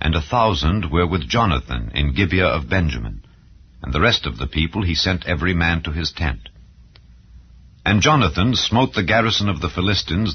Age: 60-79